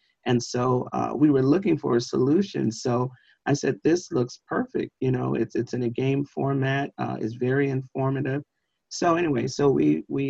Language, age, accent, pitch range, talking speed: English, 40-59, American, 120-135 Hz, 185 wpm